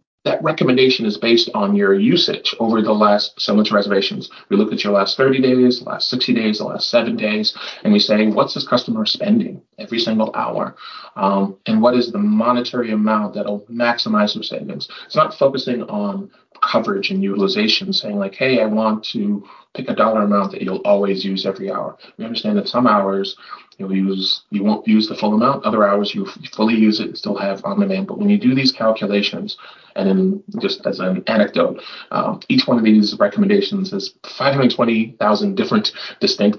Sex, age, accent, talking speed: male, 30-49, American, 190 wpm